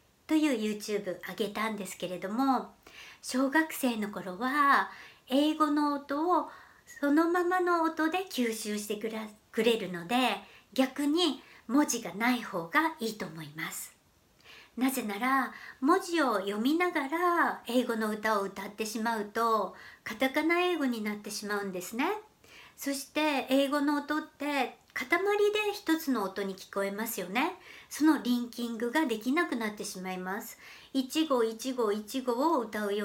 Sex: male